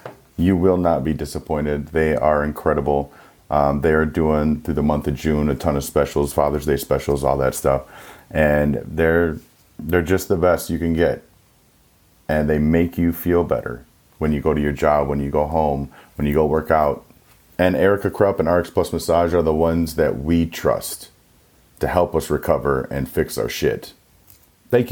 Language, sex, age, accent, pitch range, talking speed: English, male, 30-49, American, 75-90 Hz, 190 wpm